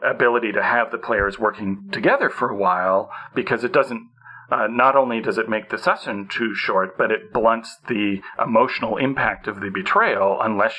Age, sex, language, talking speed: 40-59, male, English, 185 wpm